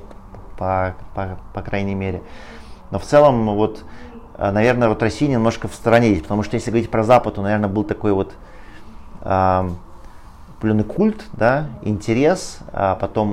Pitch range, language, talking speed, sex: 95-110 Hz, Russian, 145 wpm, male